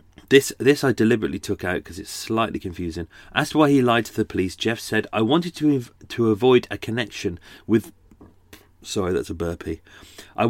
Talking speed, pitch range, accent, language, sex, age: 190 wpm, 95-120 Hz, British, English, male, 40-59